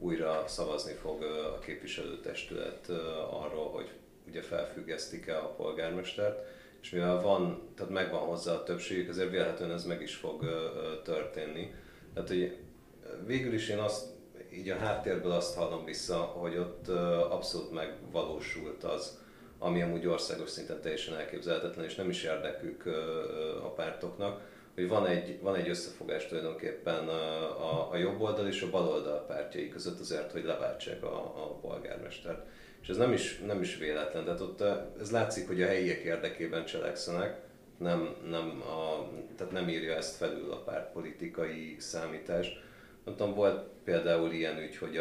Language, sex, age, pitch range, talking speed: Hungarian, male, 40-59, 80-130 Hz, 145 wpm